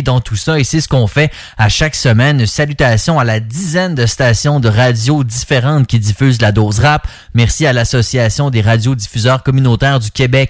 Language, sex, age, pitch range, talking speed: English, male, 30-49, 115-150 Hz, 190 wpm